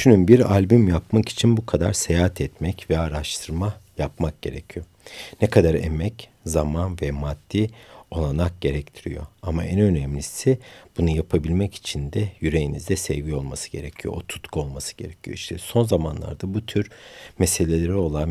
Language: Turkish